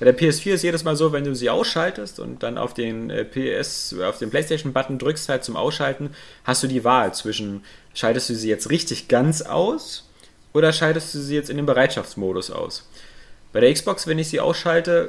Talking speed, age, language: 205 wpm, 30-49, German